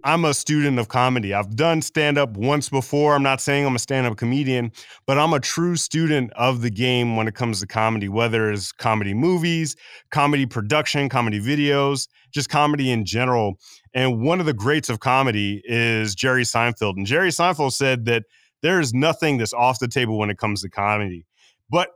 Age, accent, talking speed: 30-49, American, 190 wpm